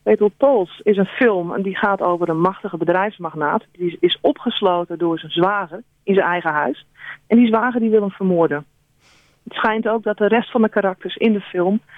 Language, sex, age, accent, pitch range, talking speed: Dutch, female, 40-59, Dutch, 165-210 Hz, 205 wpm